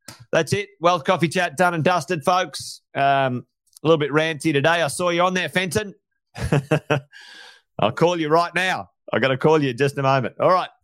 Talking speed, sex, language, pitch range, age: 195 wpm, male, English, 120-170 Hz, 30-49